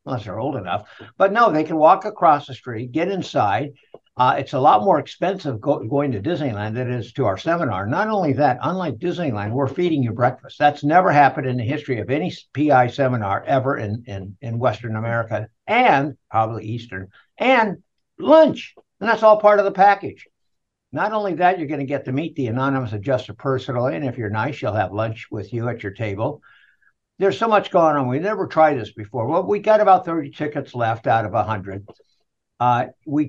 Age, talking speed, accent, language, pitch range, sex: 60-79, 205 wpm, American, English, 115-155 Hz, male